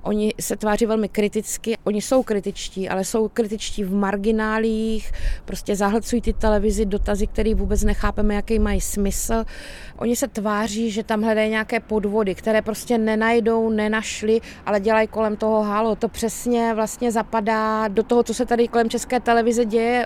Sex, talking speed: female, 160 wpm